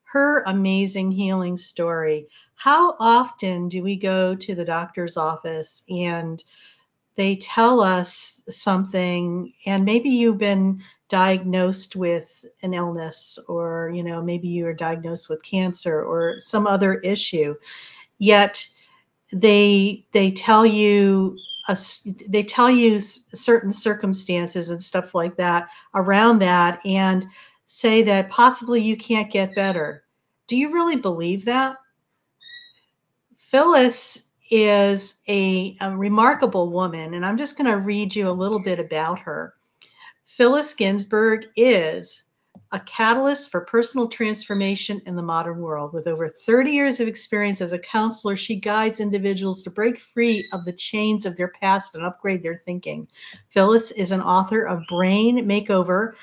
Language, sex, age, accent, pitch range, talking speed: English, female, 50-69, American, 180-220 Hz, 140 wpm